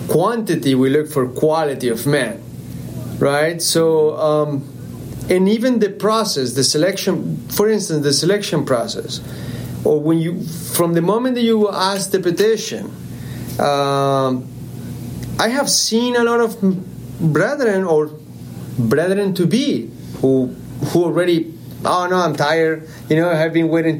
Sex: male